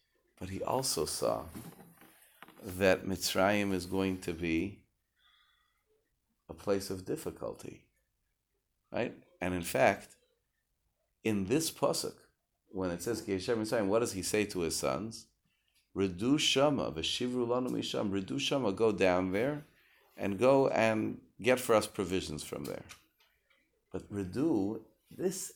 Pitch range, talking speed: 100-140 Hz, 125 wpm